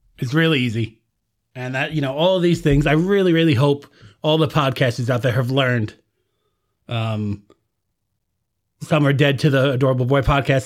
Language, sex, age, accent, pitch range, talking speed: English, male, 30-49, American, 120-155 Hz, 175 wpm